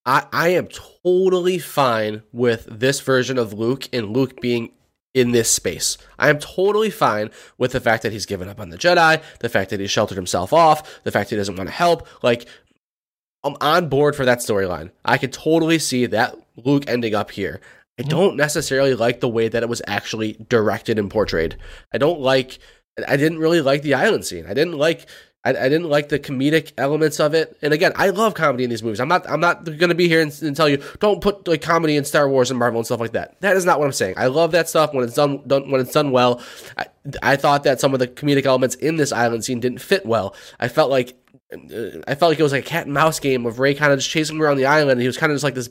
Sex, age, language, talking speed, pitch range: male, 20-39, English, 255 wpm, 120-155 Hz